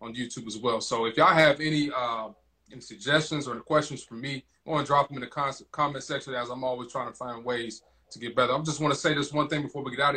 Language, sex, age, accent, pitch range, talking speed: English, male, 20-39, American, 120-140 Hz, 275 wpm